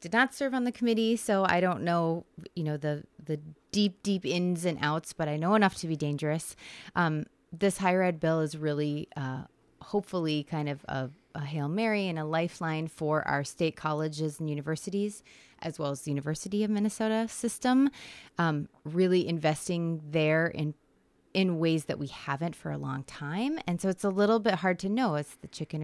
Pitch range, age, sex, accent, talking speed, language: 155-200 Hz, 20-39, female, American, 195 wpm, English